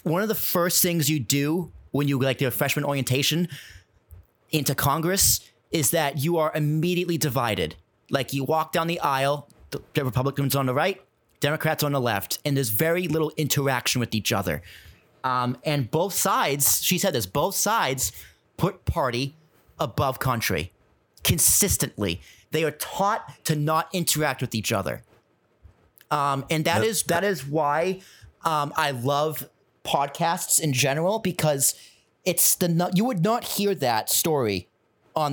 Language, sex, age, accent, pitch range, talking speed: English, male, 30-49, American, 135-180 Hz, 155 wpm